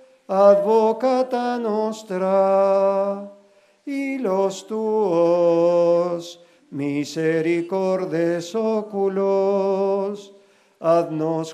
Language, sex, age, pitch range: Spanish, male, 50-69, 165-210 Hz